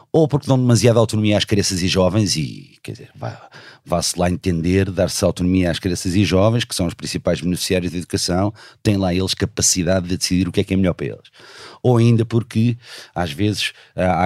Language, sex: Portuguese, male